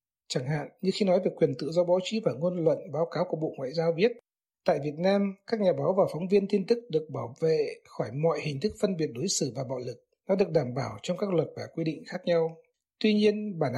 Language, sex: Vietnamese, male